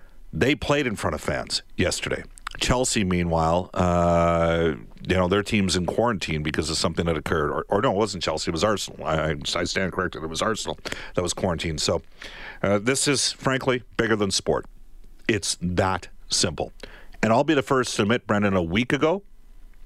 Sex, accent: male, American